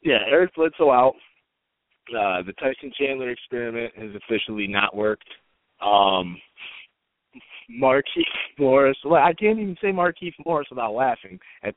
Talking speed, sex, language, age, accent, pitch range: 135 wpm, male, English, 20-39, American, 115-165 Hz